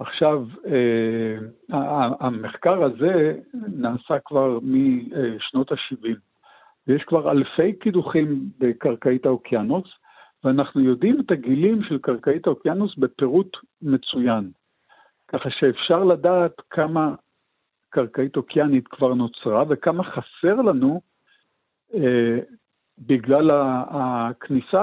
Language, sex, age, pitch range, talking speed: Hebrew, male, 60-79, 130-185 Hz, 85 wpm